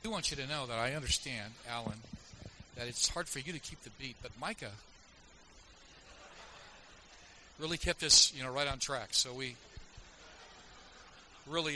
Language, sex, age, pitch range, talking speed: English, male, 50-69, 110-140 Hz, 165 wpm